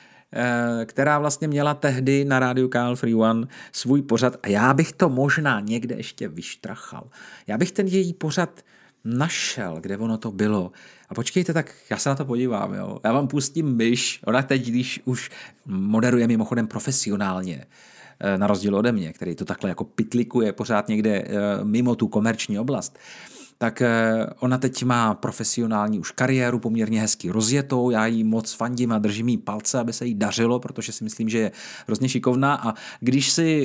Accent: native